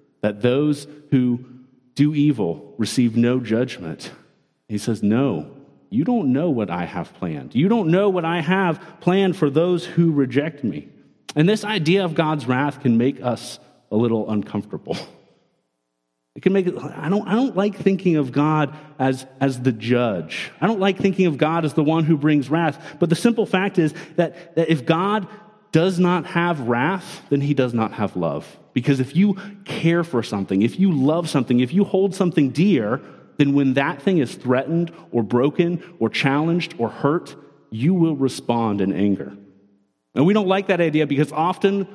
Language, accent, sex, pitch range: English, American, male, 125-175 Hz